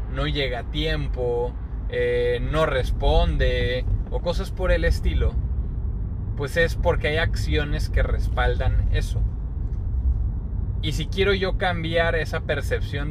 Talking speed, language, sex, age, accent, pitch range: 125 wpm, Spanish, male, 20-39, Mexican, 85-125 Hz